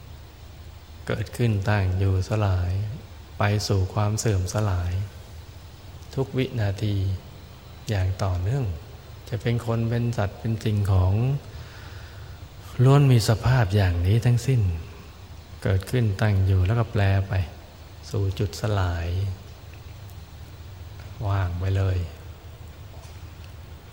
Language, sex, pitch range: Thai, male, 90-110 Hz